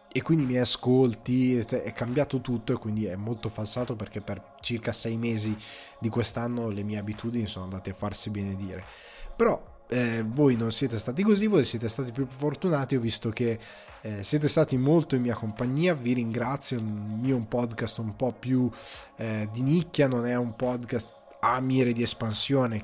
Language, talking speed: Italian, 180 wpm